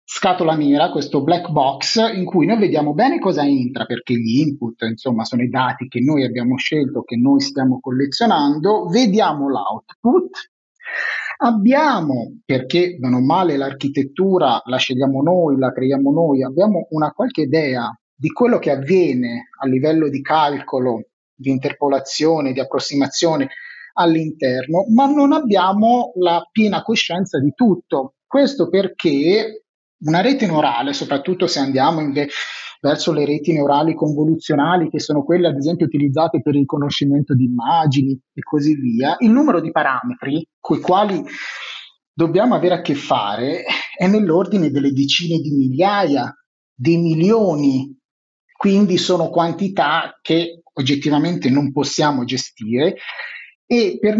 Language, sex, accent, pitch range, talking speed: Italian, male, native, 140-190 Hz, 135 wpm